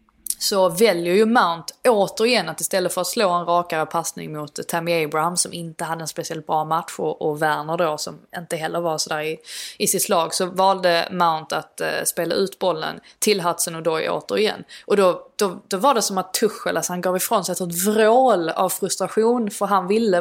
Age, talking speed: 20-39, 205 wpm